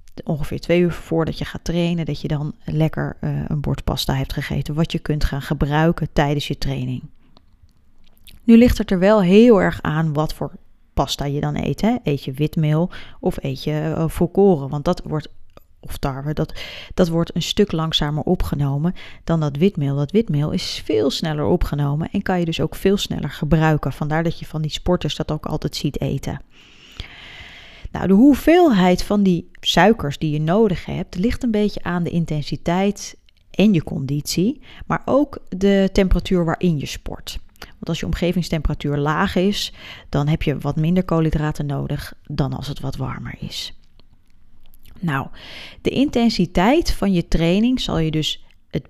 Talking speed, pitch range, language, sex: 175 wpm, 145-185 Hz, Dutch, female